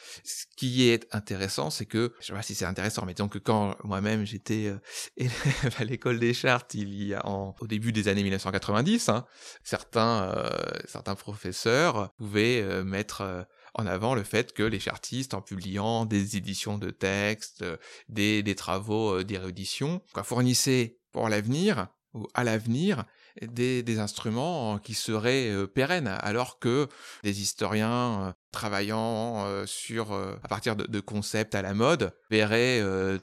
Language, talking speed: French, 165 wpm